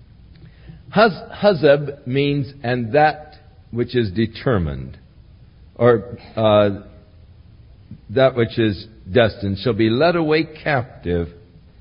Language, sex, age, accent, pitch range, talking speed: English, male, 60-79, American, 105-155 Hz, 90 wpm